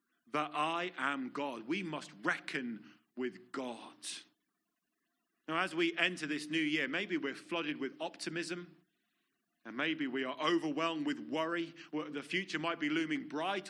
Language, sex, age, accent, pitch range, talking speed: English, male, 30-49, British, 150-200 Hz, 150 wpm